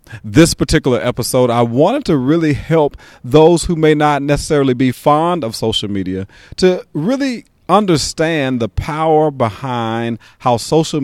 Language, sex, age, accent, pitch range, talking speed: English, male, 40-59, American, 115-150 Hz, 140 wpm